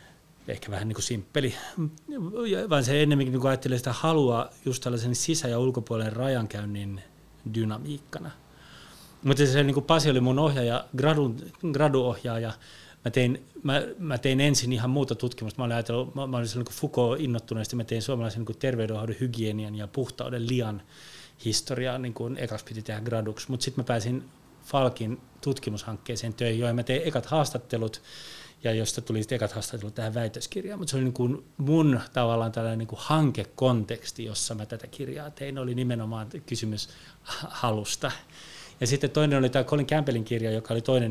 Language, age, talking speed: Finnish, 30-49, 160 wpm